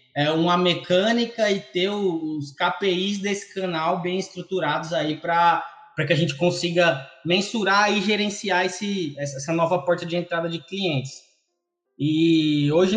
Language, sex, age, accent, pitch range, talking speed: Portuguese, male, 20-39, Brazilian, 160-190 Hz, 140 wpm